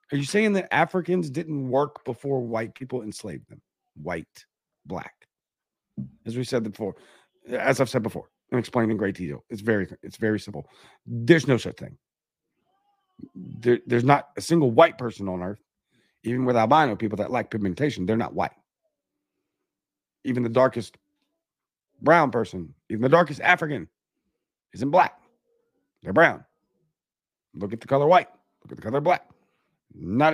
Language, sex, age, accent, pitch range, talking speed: English, male, 40-59, American, 110-155 Hz, 155 wpm